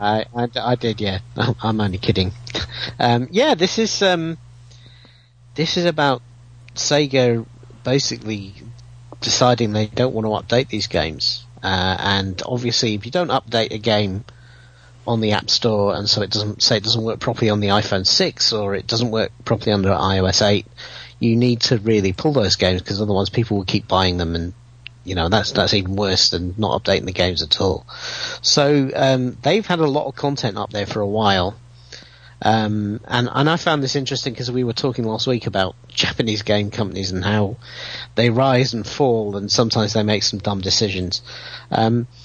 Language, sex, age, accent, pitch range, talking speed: English, male, 40-59, British, 100-125 Hz, 185 wpm